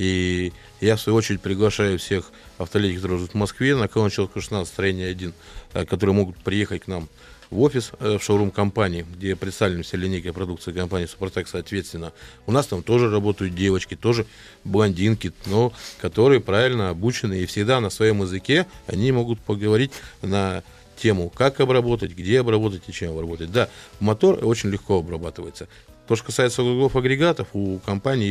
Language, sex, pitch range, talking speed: Russian, male, 90-110 Hz, 155 wpm